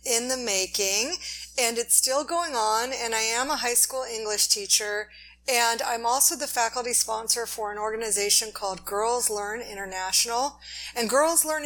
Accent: American